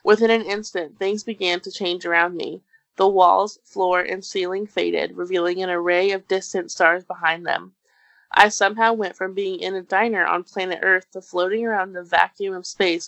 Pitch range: 175-205 Hz